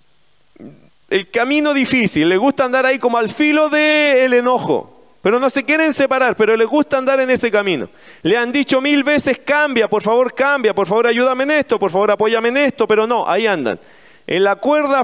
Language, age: Spanish, 40-59